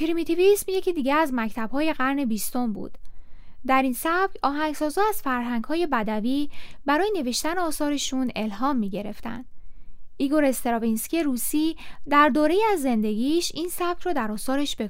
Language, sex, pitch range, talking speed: Persian, female, 245-320 Hz, 135 wpm